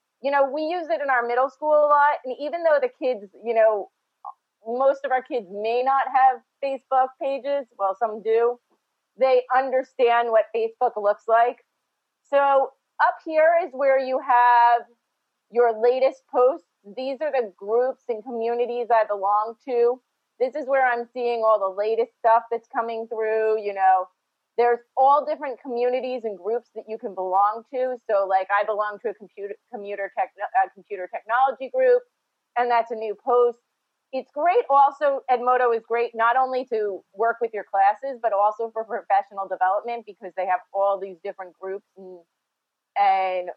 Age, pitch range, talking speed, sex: 30-49, 210-260 Hz, 170 wpm, female